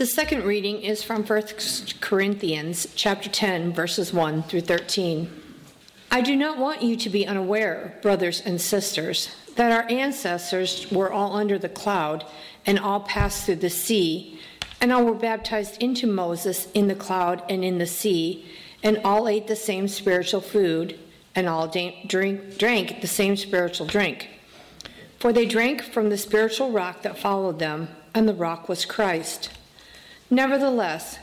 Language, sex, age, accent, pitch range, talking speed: English, female, 50-69, American, 180-220 Hz, 155 wpm